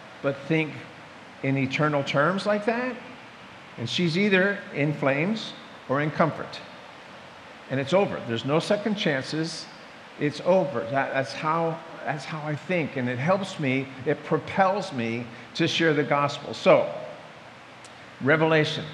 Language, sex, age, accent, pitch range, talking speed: English, male, 50-69, American, 150-200 Hz, 140 wpm